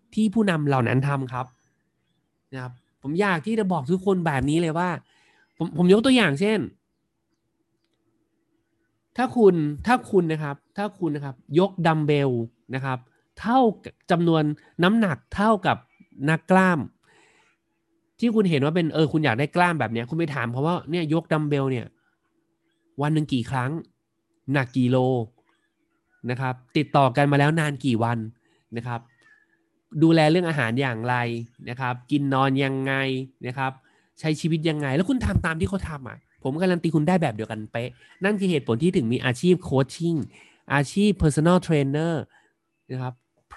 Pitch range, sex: 135-185 Hz, male